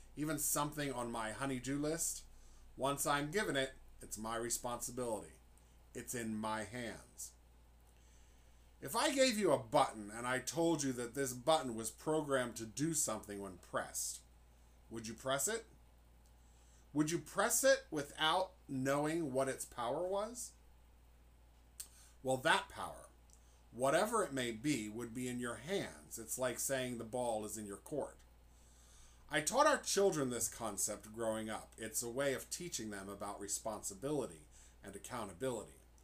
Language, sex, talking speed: English, male, 150 wpm